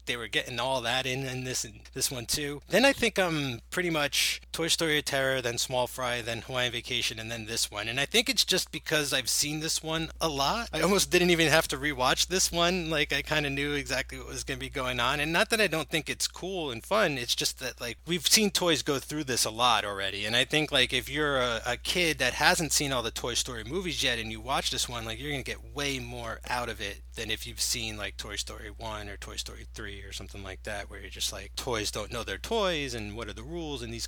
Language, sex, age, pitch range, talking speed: English, male, 30-49, 120-160 Hz, 275 wpm